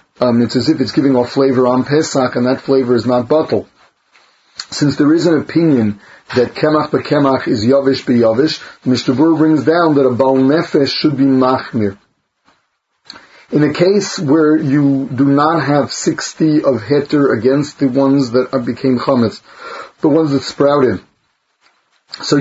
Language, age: English, 40-59